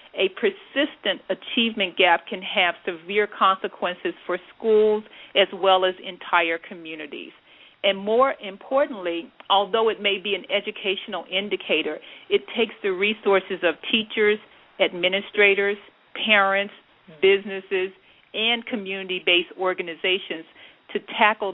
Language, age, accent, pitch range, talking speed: English, 50-69, American, 180-210 Hz, 110 wpm